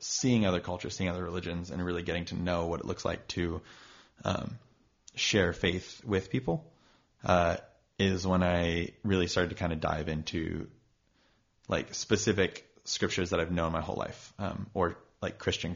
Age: 20-39